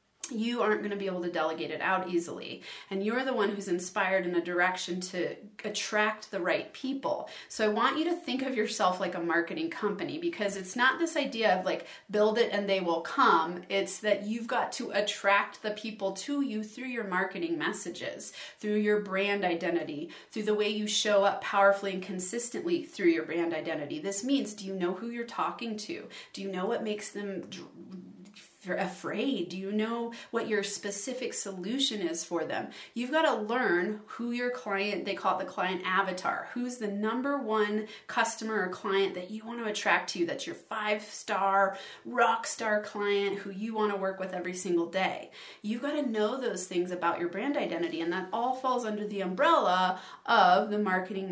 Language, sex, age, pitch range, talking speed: English, female, 30-49, 185-225 Hz, 200 wpm